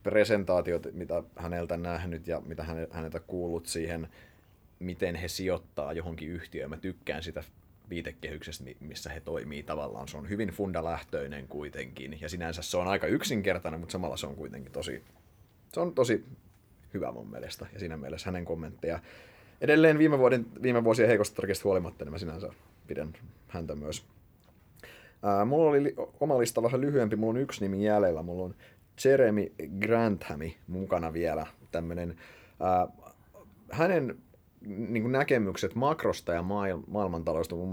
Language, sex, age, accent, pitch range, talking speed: Finnish, male, 30-49, native, 80-105 Hz, 145 wpm